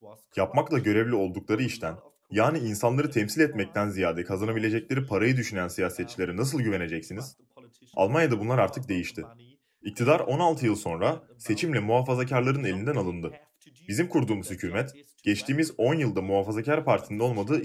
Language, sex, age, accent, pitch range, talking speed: Turkish, male, 30-49, native, 100-150 Hz, 120 wpm